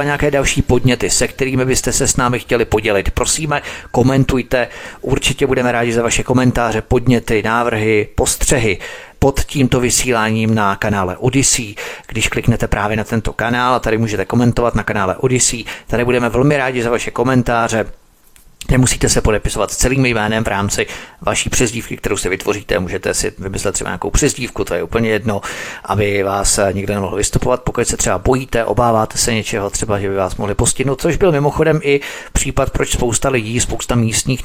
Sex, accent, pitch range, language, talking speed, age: male, native, 105-125 Hz, Czech, 170 wpm, 40-59